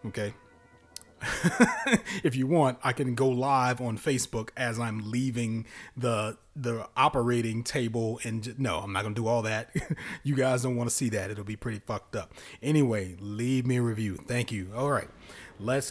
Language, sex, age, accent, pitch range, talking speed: English, male, 30-49, American, 105-135 Hz, 180 wpm